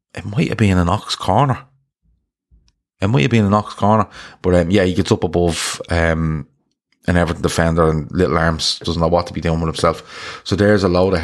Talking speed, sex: 220 wpm, male